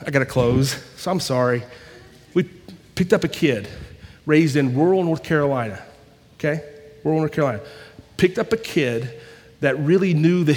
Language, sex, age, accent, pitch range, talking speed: English, male, 40-59, American, 135-170 Hz, 165 wpm